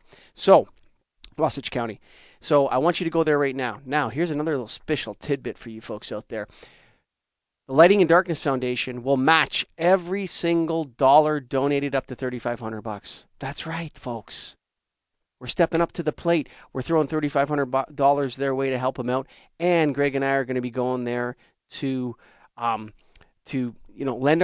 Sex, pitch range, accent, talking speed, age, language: male, 125-155 Hz, American, 180 wpm, 30-49, English